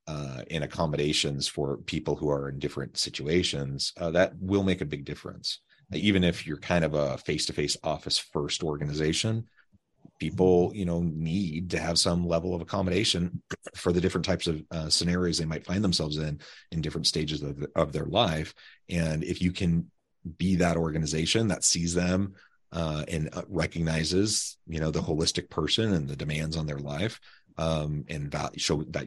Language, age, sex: English, 30-49, male